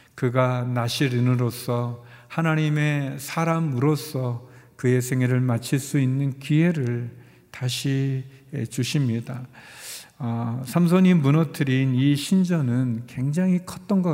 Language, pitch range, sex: Korean, 120-160 Hz, male